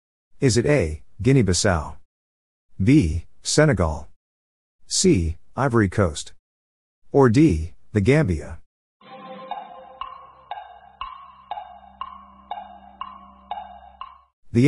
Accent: American